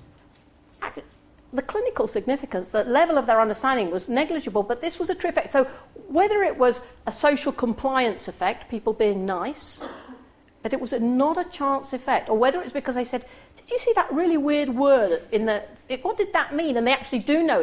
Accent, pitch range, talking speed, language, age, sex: British, 235-320 Hz, 195 wpm, English, 50-69, female